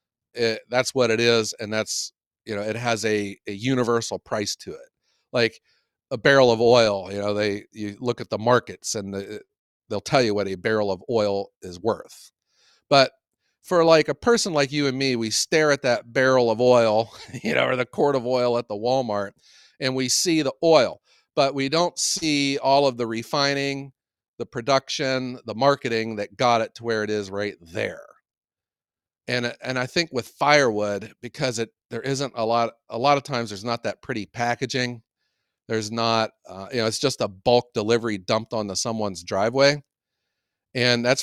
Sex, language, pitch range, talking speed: male, English, 110-140 Hz, 190 wpm